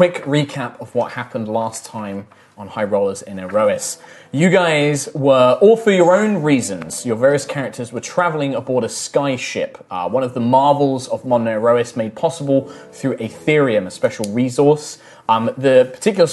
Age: 20-39